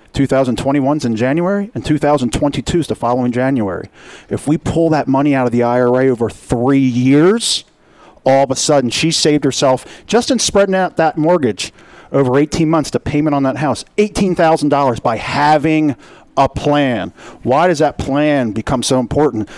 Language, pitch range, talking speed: English, 130-165 Hz, 165 wpm